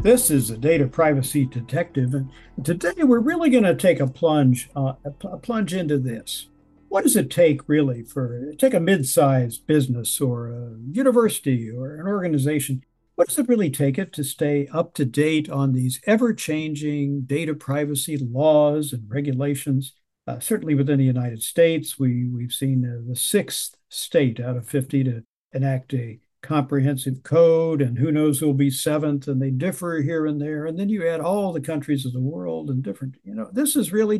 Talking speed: 185 wpm